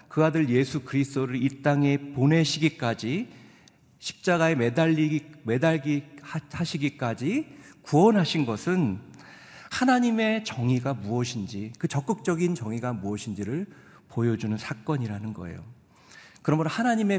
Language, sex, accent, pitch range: Korean, male, native, 120-165 Hz